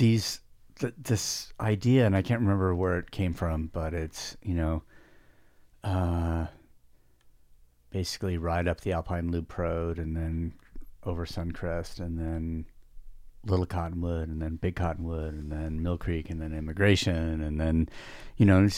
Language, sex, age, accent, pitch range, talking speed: English, male, 40-59, American, 80-105 Hz, 155 wpm